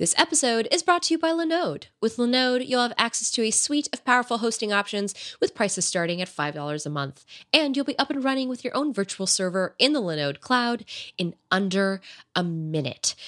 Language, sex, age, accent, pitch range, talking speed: English, female, 20-39, American, 180-265 Hz, 210 wpm